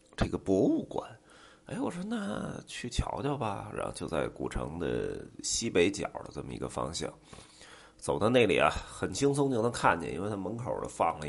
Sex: male